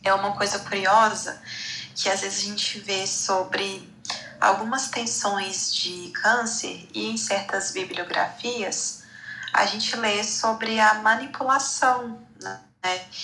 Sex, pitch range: female, 195-230 Hz